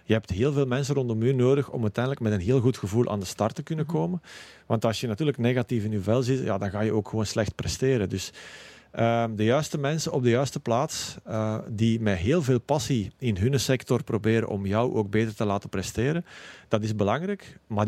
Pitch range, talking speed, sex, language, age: 105-130 Hz, 225 wpm, male, Dutch, 40-59